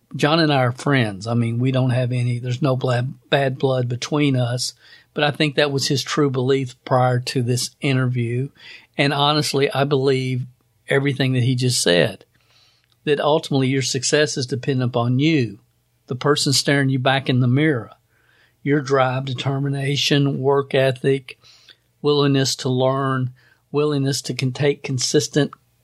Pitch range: 125-145 Hz